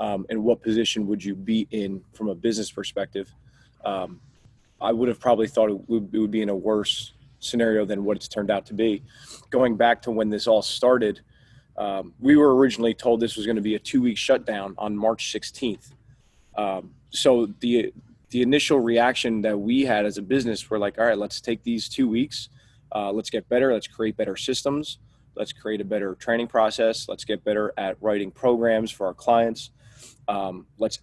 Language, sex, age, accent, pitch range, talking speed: English, male, 20-39, American, 105-125 Hz, 200 wpm